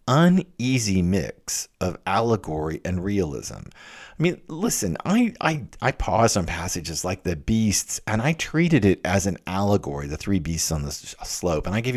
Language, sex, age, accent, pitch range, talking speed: English, male, 50-69, American, 90-145 Hz, 170 wpm